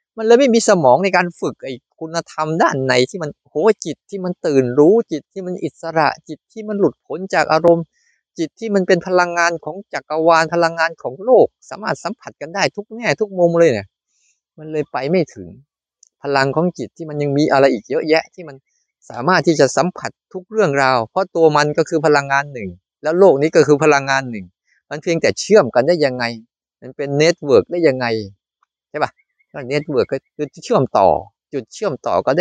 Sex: male